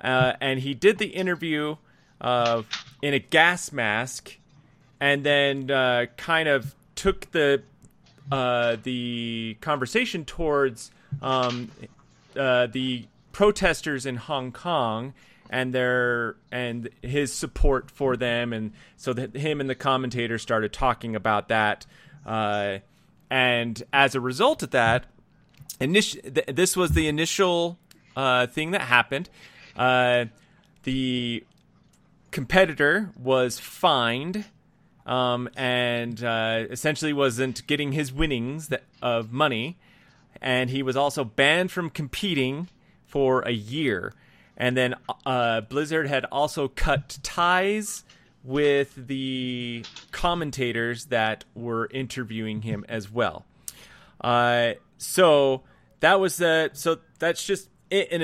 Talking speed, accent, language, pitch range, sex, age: 120 wpm, American, English, 120-155 Hz, male, 30-49